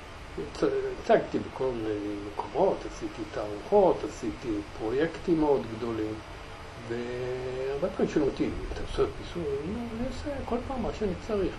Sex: male